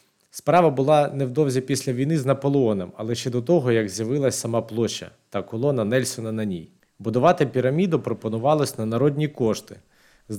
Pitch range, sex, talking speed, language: 110-140 Hz, male, 155 wpm, Ukrainian